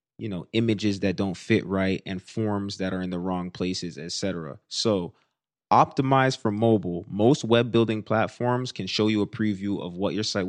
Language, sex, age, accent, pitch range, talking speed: English, male, 20-39, American, 95-115 Hz, 195 wpm